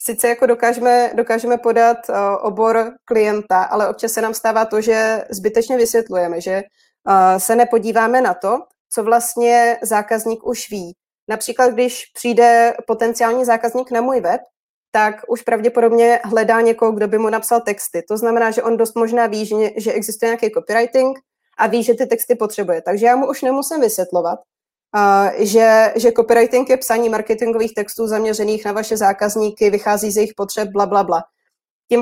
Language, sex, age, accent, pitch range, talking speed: Czech, female, 20-39, native, 215-240 Hz, 165 wpm